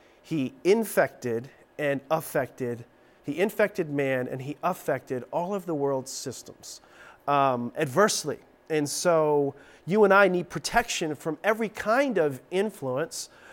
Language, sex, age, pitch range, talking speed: English, male, 40-59, 135-180 Hz, 130 wpm